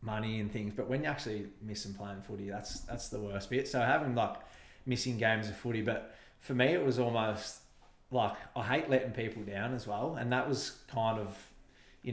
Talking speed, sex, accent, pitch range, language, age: 215 wpm, male, Australian, 105-120 Hz, English, 20-39